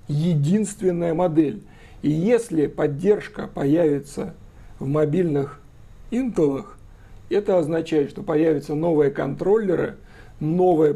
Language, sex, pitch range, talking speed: Russian, male, 145-185 Hz, 90 wpm